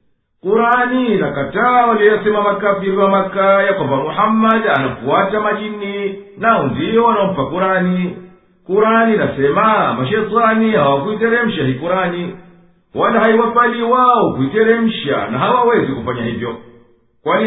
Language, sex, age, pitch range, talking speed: Swahili, male, 50-69, 195-225 Hz, 105 wpm